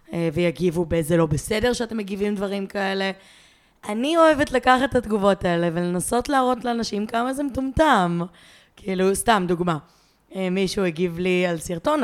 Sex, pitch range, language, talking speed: female, 180-220 Hz, Hebrew, 140 wpm